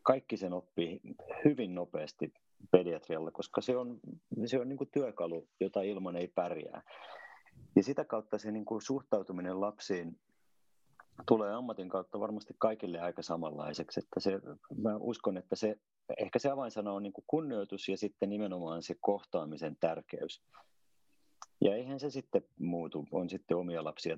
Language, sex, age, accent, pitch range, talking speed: Finnish, male, 30-49, native, 85-105 Hz, 150 wpm